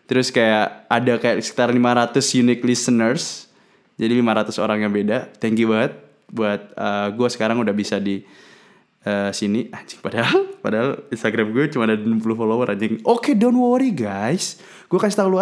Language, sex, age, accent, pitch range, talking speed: Indonesian, male, 20-39, native, 110-165 Hz, 165 wpm